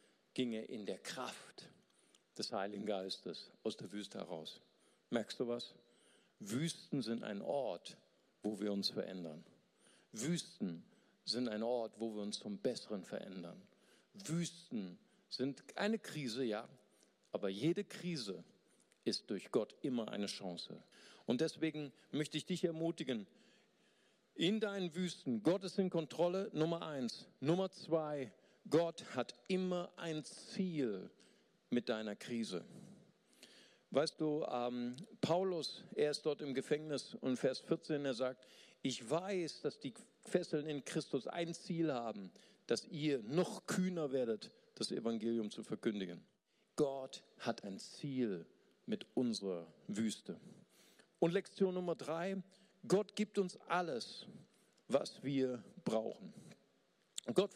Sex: male